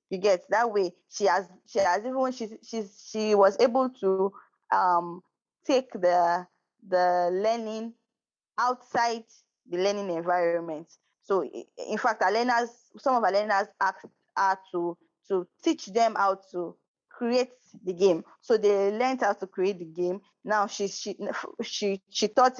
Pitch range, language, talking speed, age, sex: 175-215 Hz, English, 155 wpm, 20-39, female